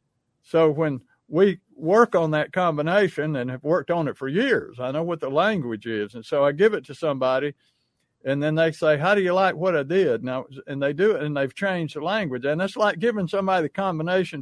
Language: English